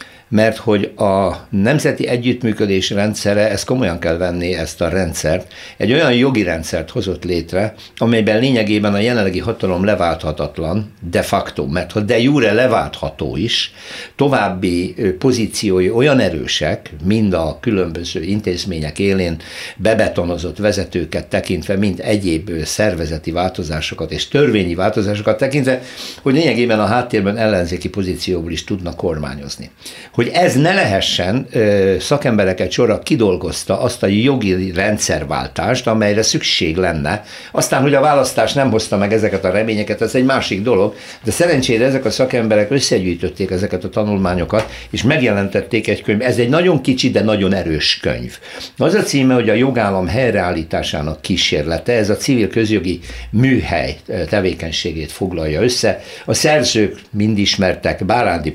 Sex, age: male, 60-79